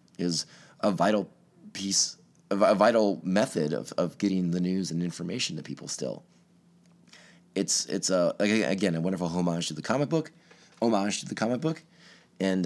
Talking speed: 160 wpm